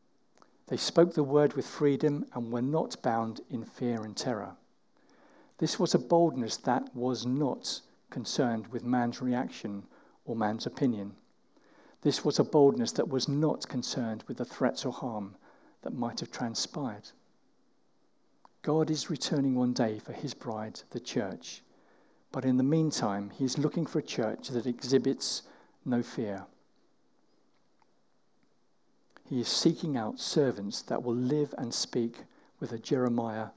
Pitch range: 120-155 Hz